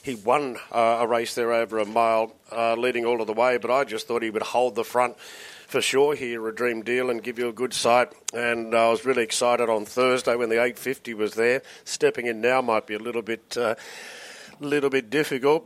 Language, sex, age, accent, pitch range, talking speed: English, male, 40-59, Australian, 115-135 Hz, 240 wpm